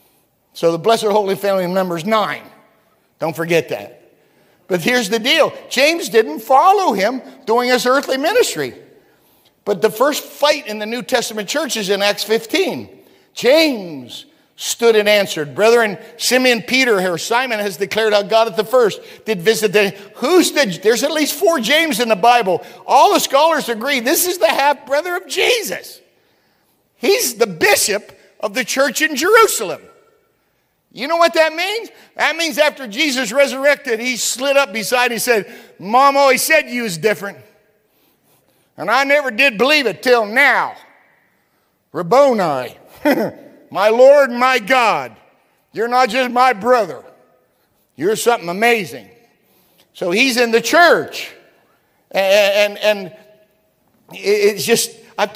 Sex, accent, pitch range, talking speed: male, American, 210-290 Hz, 150 wpm